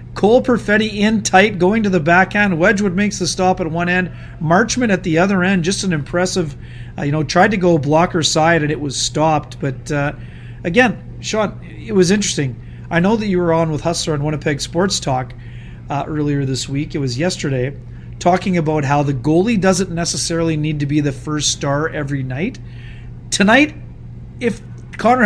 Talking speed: 190 wpm